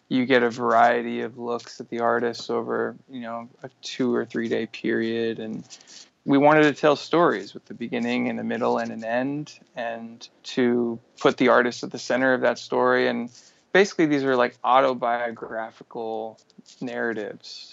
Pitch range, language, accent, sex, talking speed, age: 115-130 Hz, English, American, male, 175 wpm, 20-39